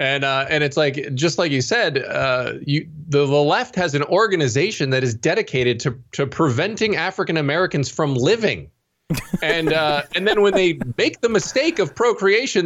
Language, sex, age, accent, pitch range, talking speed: English, male, 20-39, American, 120-160 Hz, 175 wpm